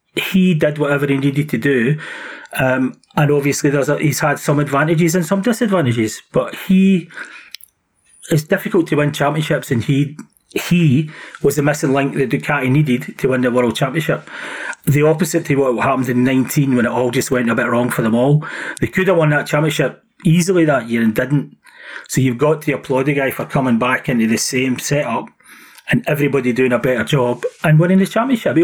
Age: 30-49